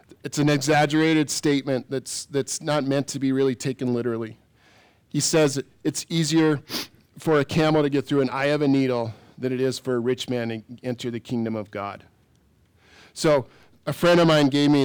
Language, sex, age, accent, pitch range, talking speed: English, male, 40-59, American, 115-145 Hz, 195 wpm